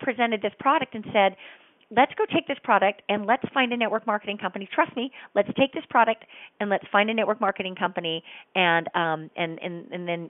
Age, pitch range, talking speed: 40-59, 180-220 Hz, 210 wpm